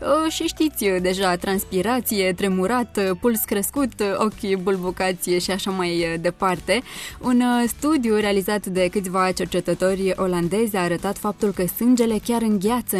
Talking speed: 125 wpm